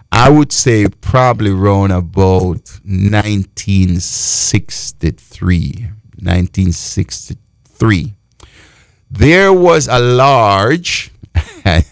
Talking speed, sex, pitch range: 60 wpm, male, 100-155 Hz